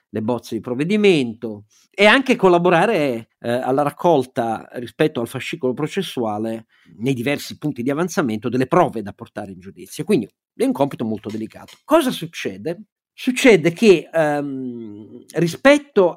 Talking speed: 135 wpm